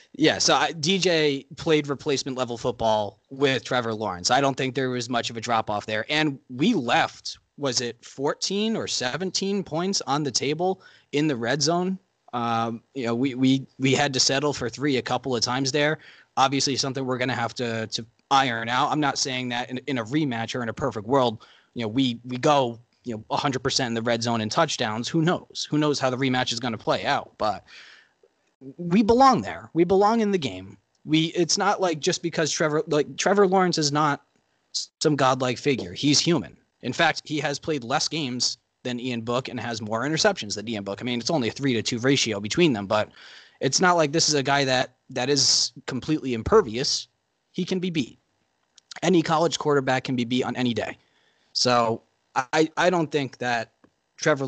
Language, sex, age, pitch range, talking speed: English, male, 20-39, 120-150 Hz, 205 wpm